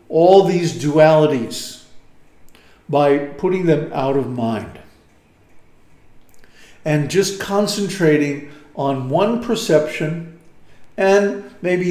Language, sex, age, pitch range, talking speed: English, male, 50-69, 145-175 Hz, 85 wpm